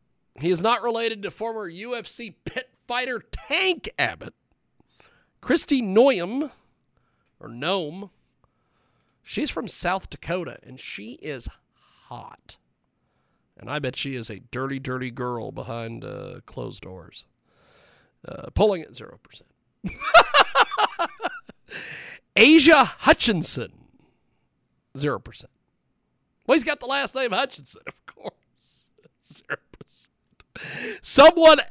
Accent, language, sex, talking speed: American, English, male, 105 wpm